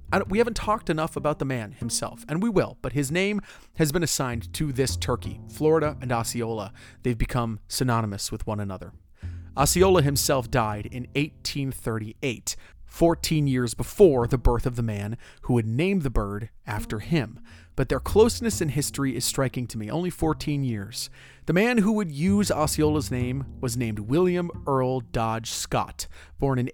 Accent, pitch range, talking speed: American, 110-155 Hz, 170 wpm